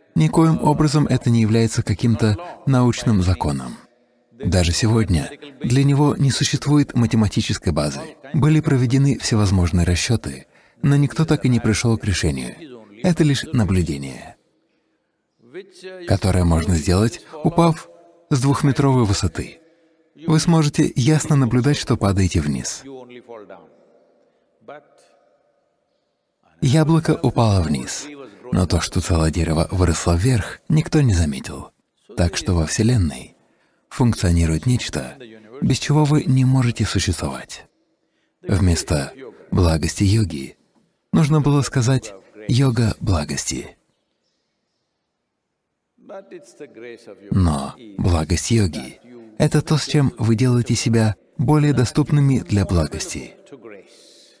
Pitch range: 90-145 Hz